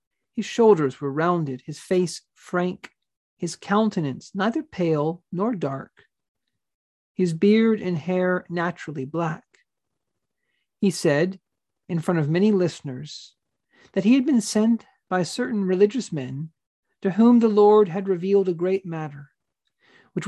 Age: 40-59